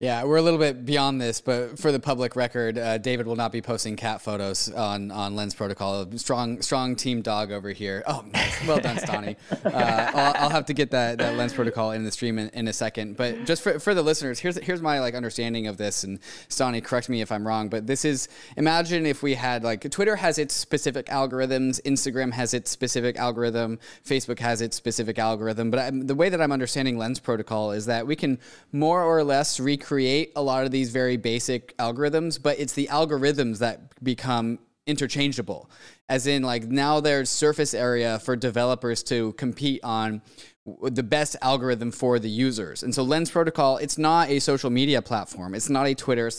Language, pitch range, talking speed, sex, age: English, 110-135 Hz, 205 wpm, male, 20-39